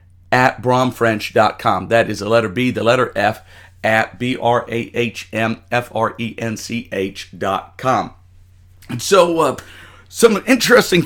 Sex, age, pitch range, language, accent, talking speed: male, 50-69, 100-135 Hz, English, American, 90 wpm